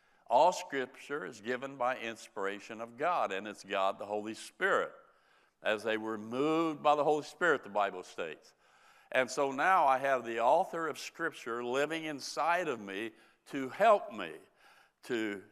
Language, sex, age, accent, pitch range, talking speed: English, male, 60-79, American, 115-145 Hz, 160 wpm